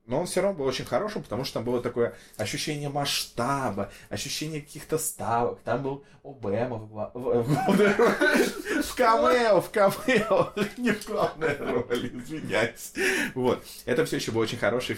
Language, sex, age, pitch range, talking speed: Russian, male, 20-39, 105-155 Hz, 140 wpm